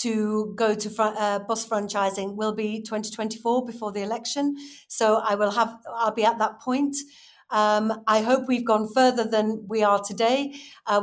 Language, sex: English, female